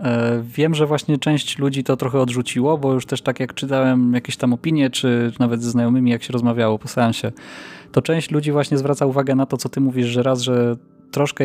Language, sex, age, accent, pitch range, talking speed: Polish, male, 20-39, native, 120-140 Hz, 215 wpm